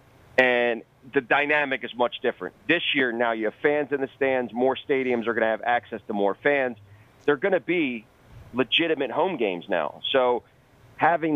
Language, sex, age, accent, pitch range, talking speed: English, male, 40-59, American, 120-145 Hz, 185 wpm